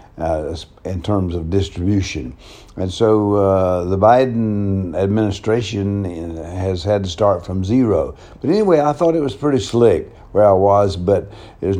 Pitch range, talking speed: 90-110 Hz, 155 wpm